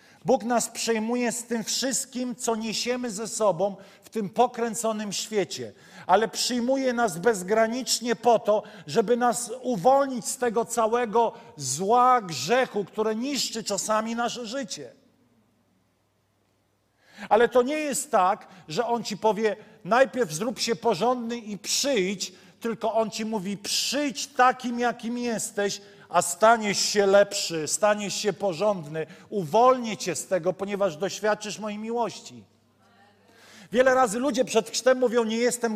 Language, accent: Polish, native